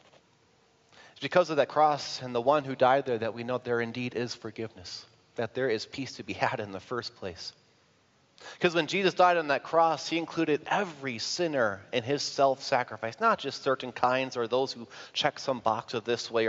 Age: 30-49